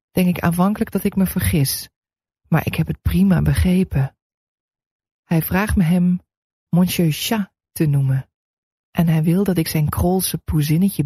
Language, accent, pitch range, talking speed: English, Dutch, 150-185 Hz, 155 wpm